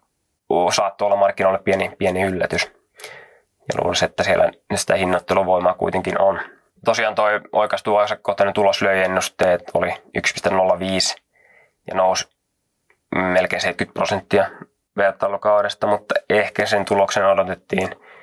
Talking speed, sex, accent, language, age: 100 wpm, male, native, Finnish, 20-39